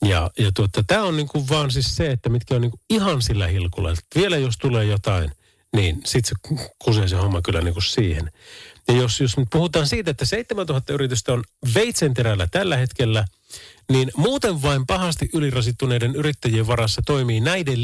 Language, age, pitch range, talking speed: Finnish, 40-59, 100-140 Hz, 170 wpm